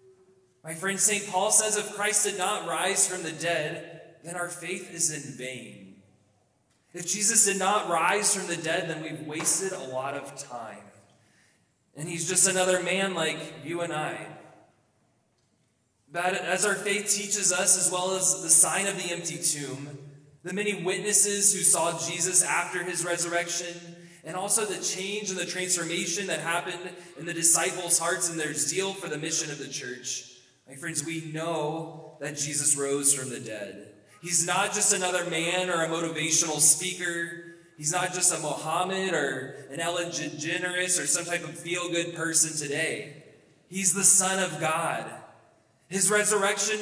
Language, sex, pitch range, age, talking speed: English, male, 160-190 Hz, 20-39, 170 wpm